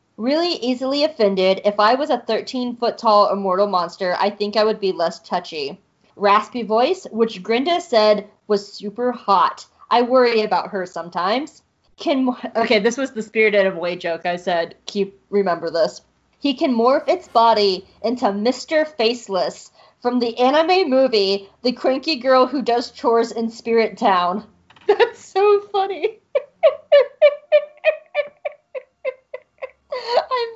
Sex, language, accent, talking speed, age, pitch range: female, English, American, 145 wpm, 20-39, 200-290 Hz